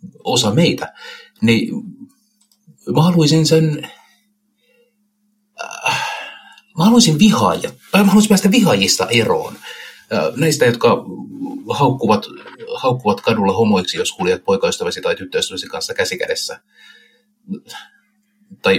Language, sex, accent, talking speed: Finnish, male, native, 95 wpm